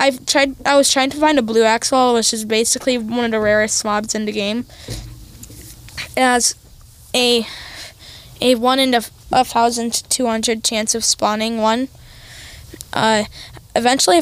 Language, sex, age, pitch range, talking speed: English, female, 10-29, 225-260 Hz, 155 wpm